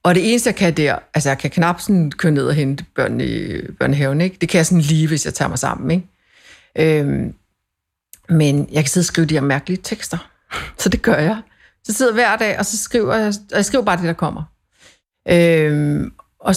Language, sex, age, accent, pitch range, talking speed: Danish, female, 60-79, native, 155-195 Hz, 225 wpm